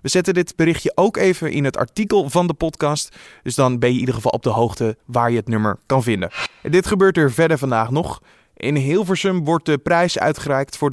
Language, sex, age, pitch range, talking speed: Dutch, male, 20-39, 125-165 Hz, 225 wpm